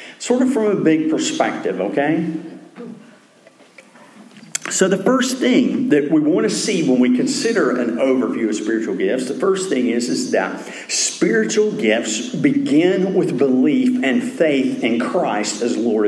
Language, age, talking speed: English, 50-69, 155 wpm